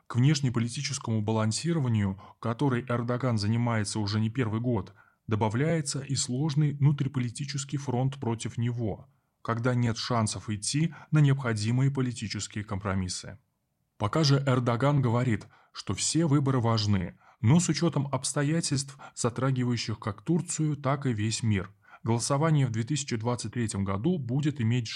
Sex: male